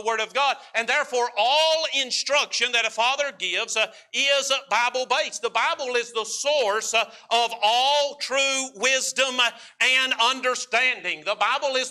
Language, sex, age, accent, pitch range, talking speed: English, male, 50-69, American, 210-260 Hz, 150 wpm